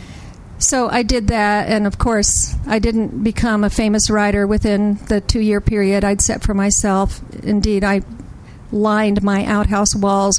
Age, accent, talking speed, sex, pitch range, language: 50-69, American, 155 wpm, female, 190-220 Hz, English